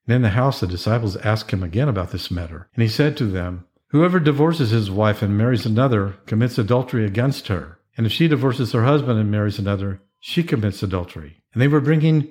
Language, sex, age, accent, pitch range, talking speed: English, male, 50-69, American, 100-135 Hz, 215 wpm